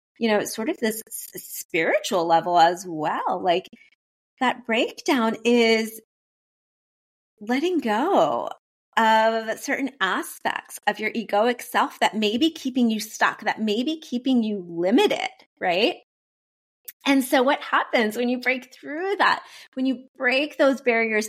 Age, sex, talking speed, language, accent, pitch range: 30-49, female, 140 wpm, English, American, 185-245 Hz